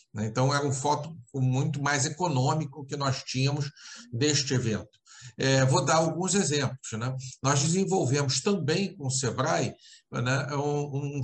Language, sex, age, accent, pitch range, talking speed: Portuguese, male, 60-79, Brazilian, 130-160 Hz, 145 wpm